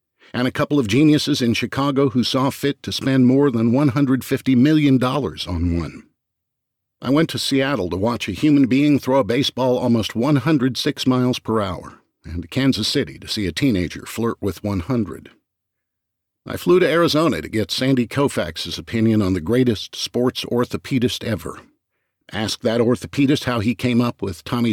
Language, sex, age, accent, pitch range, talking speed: English, male, 50-69, American, 105-135 Hz, 170 wpm